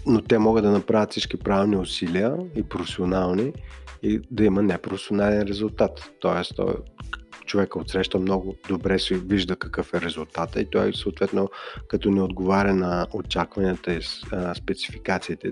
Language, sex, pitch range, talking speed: Bulgarian, male, 95-110 Hz, 140 wpm